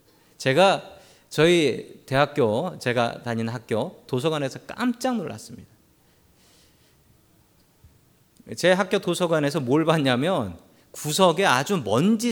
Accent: native